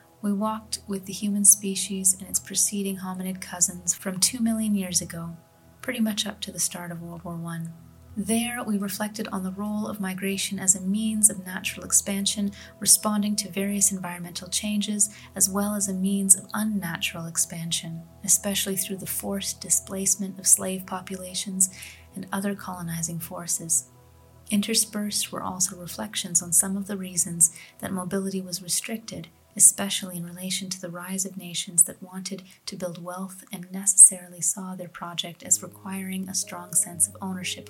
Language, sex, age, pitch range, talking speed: English, female, 30-49, 175-200 Hz, 165 wpm